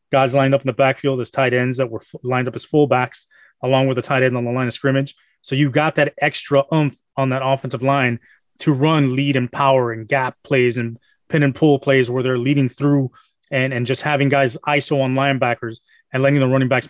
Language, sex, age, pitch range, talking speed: English, male, 30-49, 125-145 Hz, 230 wpm